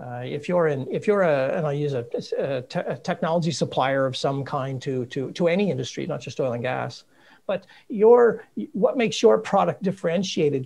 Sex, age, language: male, 50-69, English